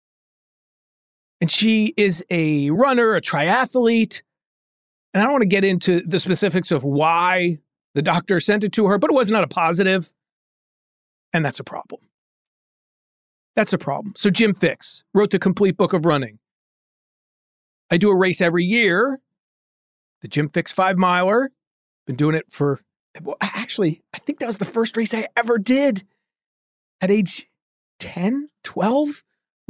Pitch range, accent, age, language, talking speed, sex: 175-230 Hz, American, 40-59, English, 150 wpm, male